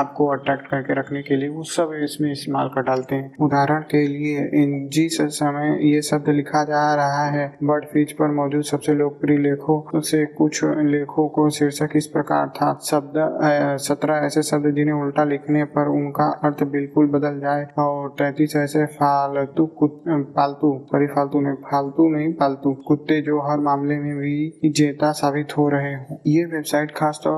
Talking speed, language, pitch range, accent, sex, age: 170 wpm, Hindi, 145-150 Hz, native, male, 20-39